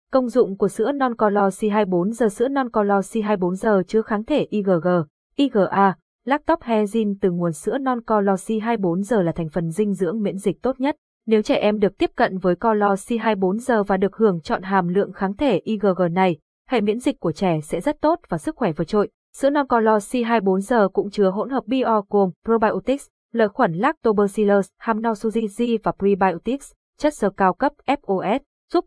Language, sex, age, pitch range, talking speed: Vietnamese, female, 20-39, 190-240 Hz, 185 wpm